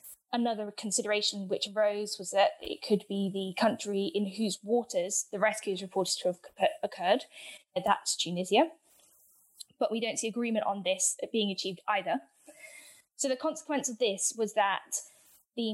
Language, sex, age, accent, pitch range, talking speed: English, female, 10-29, British, 190-235 Hz, 155 wpm